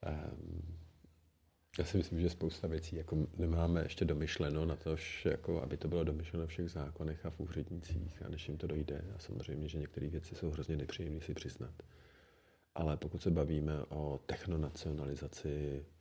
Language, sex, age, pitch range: Czech, male, 40-59, 75-85 Hz